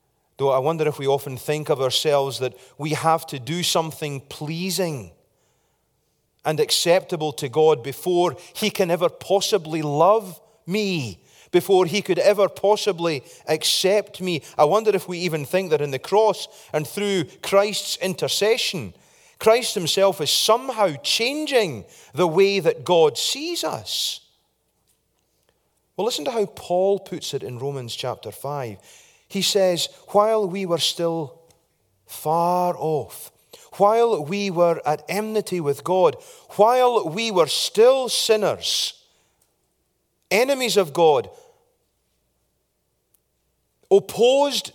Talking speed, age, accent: 125 wpm, 40-59, British